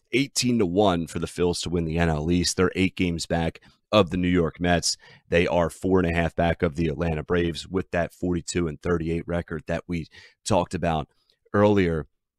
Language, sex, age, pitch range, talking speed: English, male, 30-49, 85-95 Hz, 205 wpm